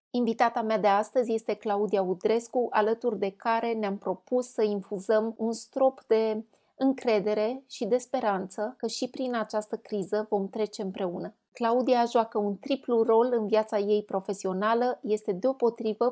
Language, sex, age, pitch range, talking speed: Romanian, female, 30-49, 205-245 Hz, 150 wpm